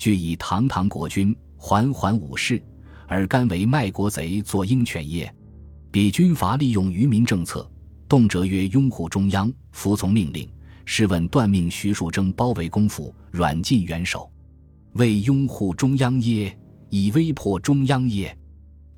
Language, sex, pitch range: Chinese, male, 85-110 Hz